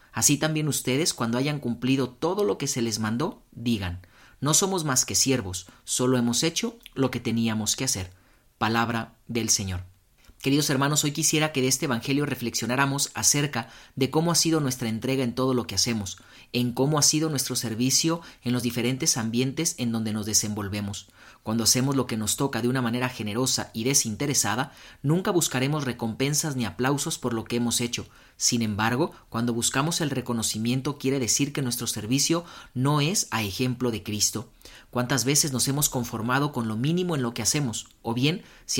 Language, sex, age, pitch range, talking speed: Spanish, male, 40-59, 115-145 Hz, 180 wpm